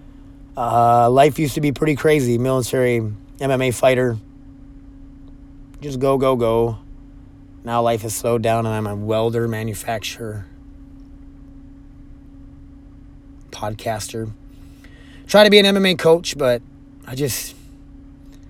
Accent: American